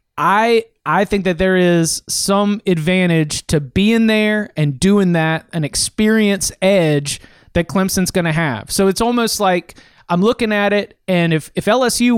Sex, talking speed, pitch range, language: male, 165 wpm, 160-200 Hz, English